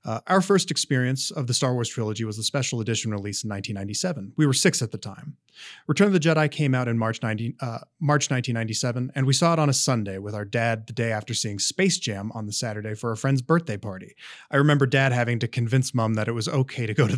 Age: 30-49